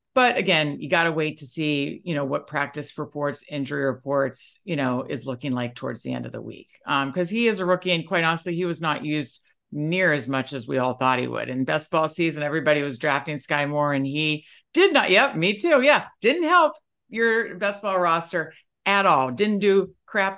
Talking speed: 225 wpm